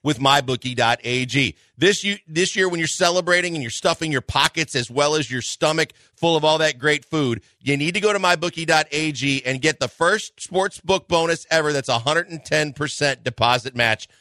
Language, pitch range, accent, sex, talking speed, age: English, 130-185 Hz, American, male, 180 wpm, 40-59